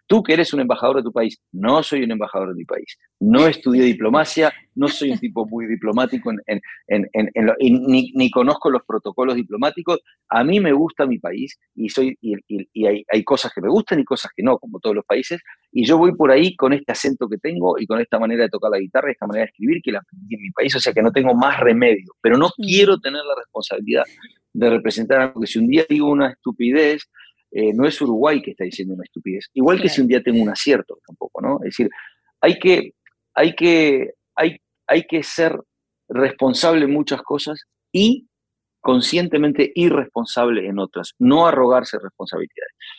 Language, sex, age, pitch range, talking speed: Spanish, male, 40-59, 115-165 Hz, 205 wpm